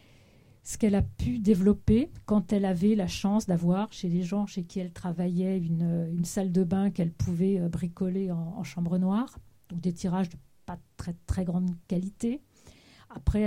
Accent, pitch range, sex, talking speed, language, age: French, 175-205 Hz, female, 180 wpm, French, 50-69